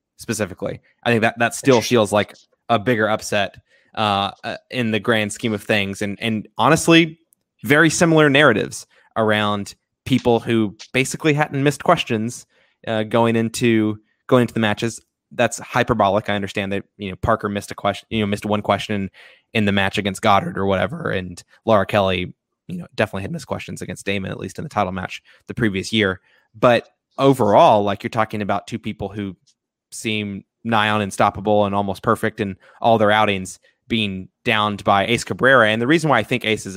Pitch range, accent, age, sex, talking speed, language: 100-115 Hz, American, 20-39, male, 185 wpm, English